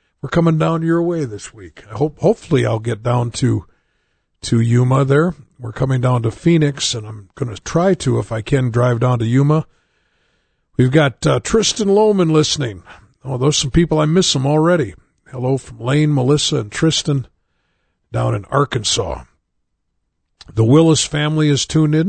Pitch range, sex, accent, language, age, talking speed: 120-155 Hz, male, American, English, 50-69, 175 wpm